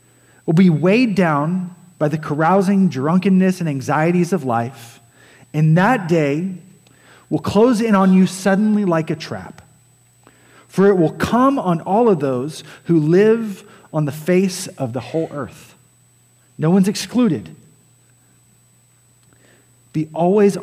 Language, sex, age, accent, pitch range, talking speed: English, male, 30-49, American, 145-185 Hz, 135 wpm